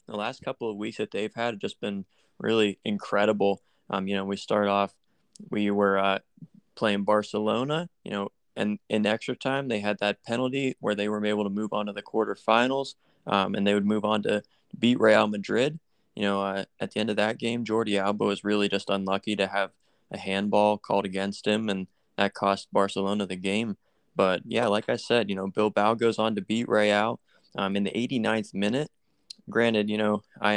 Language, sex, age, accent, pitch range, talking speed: English, male, 20-39, American, 100-110 Hz, 205 wpm